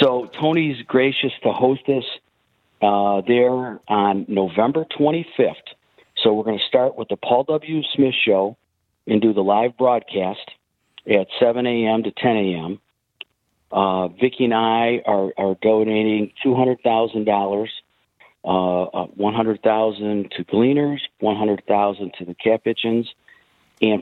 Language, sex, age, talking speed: English, male, 50-69, 125 wpm